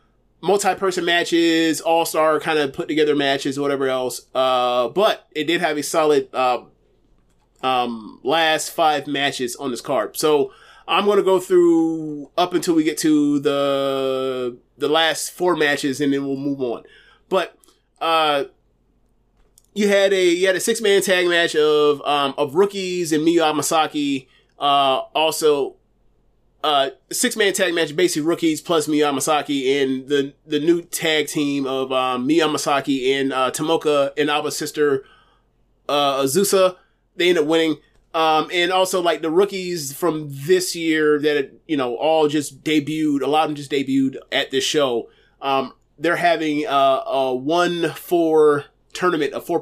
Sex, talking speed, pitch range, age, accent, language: male, 160 wpm, 140-170 Hz, 30-49, American, English